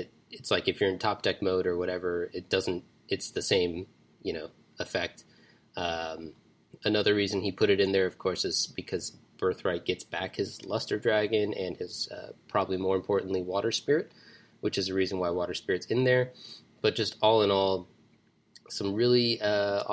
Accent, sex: American, male